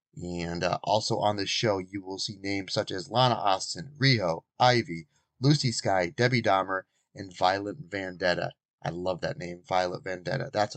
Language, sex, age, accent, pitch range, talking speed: English, male, 30-49, American, 100-130 Hz, 165 wpm